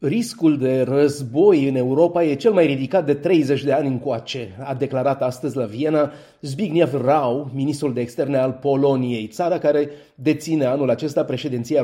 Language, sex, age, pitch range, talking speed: Romanian, male, 30-49, 125-170 Hz, 160 wpm